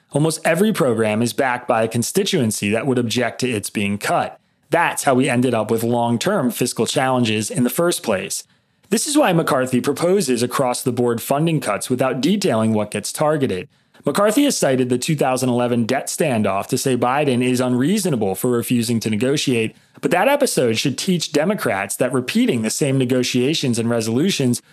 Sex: male